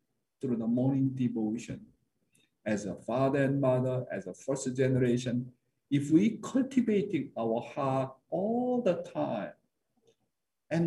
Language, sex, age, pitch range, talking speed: English, male, 50-69, 115-150 Hz, 120 wpm